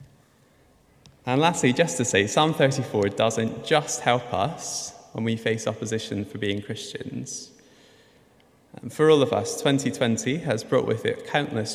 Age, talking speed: 20-39, 150 wpm